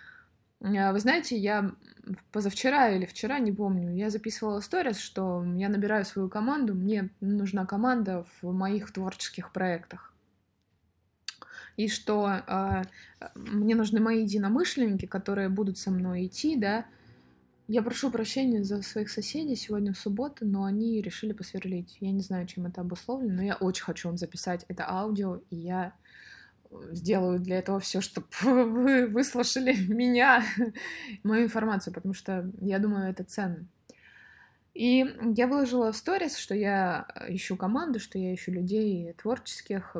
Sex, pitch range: female, 185-225 Hz